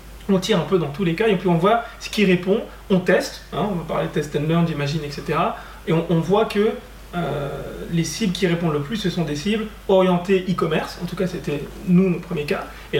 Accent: French